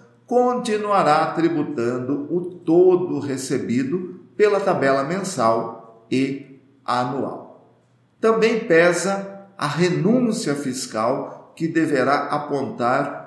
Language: Portuguese